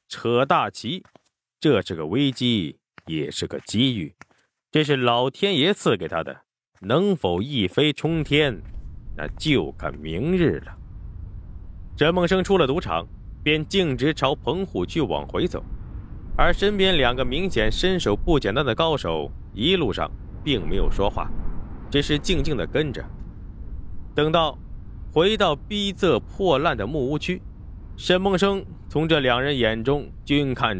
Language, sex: Chinese, male